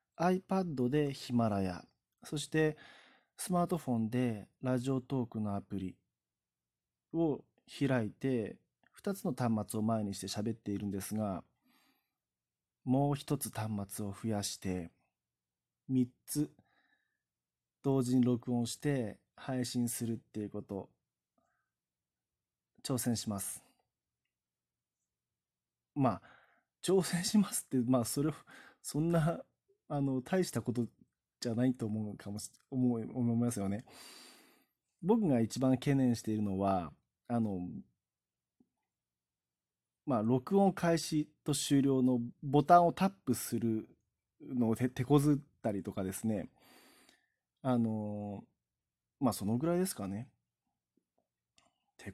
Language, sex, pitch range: Japanese, male, 100-140 Hz